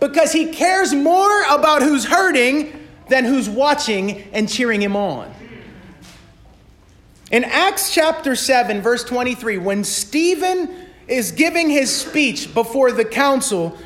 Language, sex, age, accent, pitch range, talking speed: English, male, 30-49, American, 235-310 Hz, 125 wpm